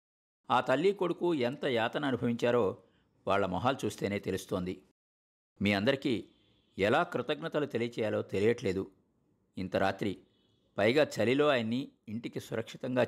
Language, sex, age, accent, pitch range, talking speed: Telugu, male, 50-69, native, 100-135 Hz, 105 wpm